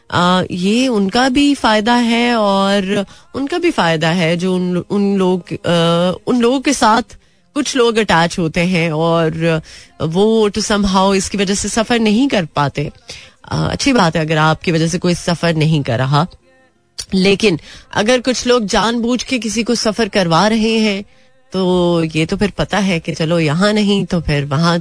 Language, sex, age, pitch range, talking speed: Hindi, female, 30-49, 160-210 Hz, 180 wpm